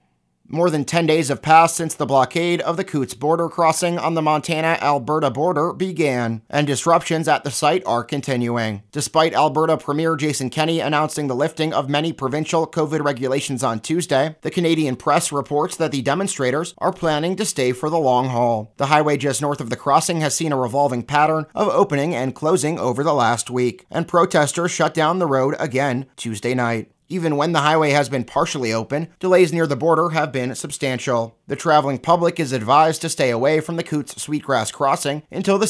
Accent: American